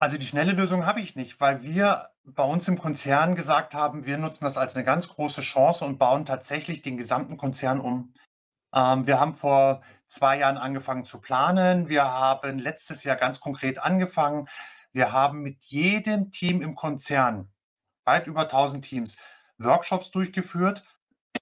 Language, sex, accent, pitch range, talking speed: German, male, German, 130-170 Hz, 165 wpm